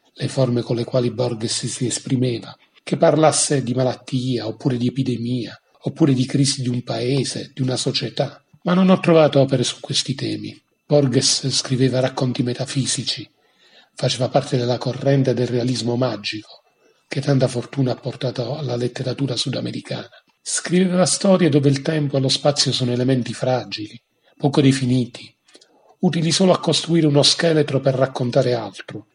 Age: 40-59